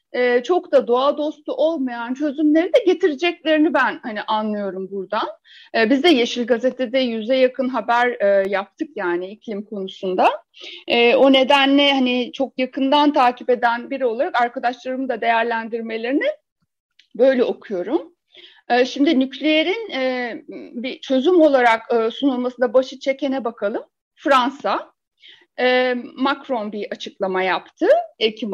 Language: Turkish